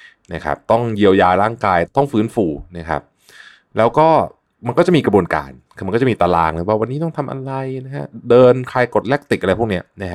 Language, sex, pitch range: Thai, male, 85-120 Hz